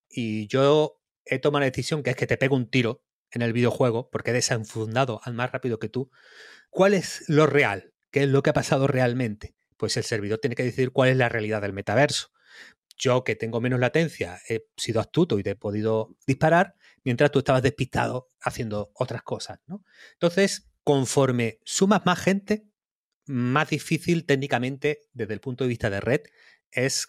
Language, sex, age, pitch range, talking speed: Spanish, male, 30-49, 120-150 Hz, 185 wpm